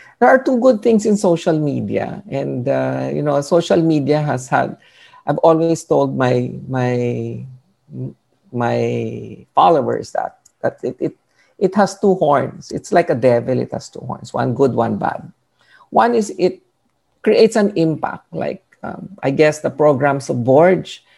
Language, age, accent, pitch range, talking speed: Filipino, 50-69, native, 130-185 Hz, 160 wpm